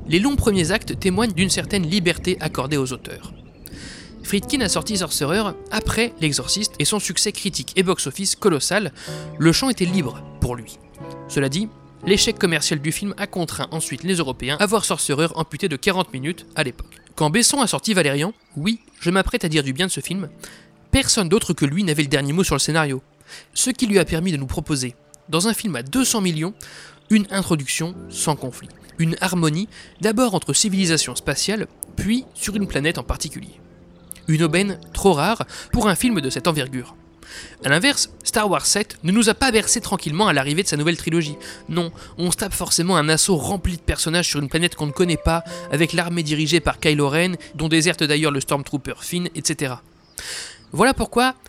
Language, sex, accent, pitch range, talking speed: French, male, French, 150-195 Hz, 190 wpm